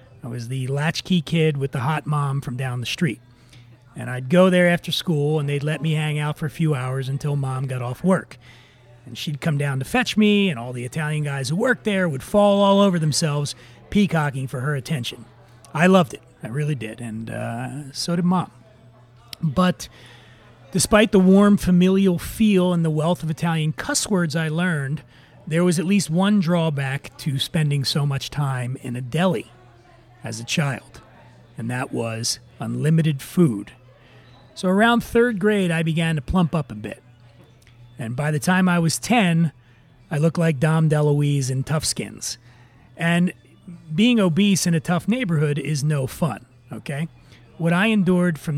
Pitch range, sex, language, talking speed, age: 125-175 Hz, male, English, 180 wpm, 30-49